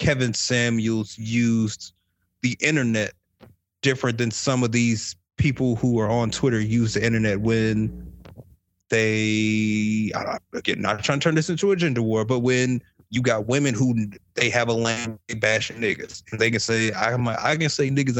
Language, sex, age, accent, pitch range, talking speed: English, male, 30-49, American, 105-140 Hz, 170 wpm